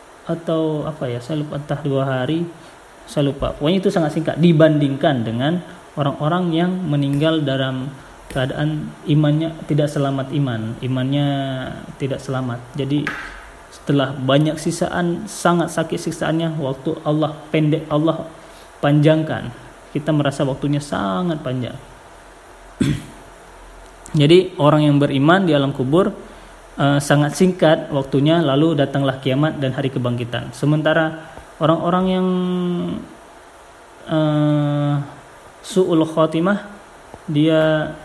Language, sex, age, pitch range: Indonesian, male, 20-39, 135-165 Hz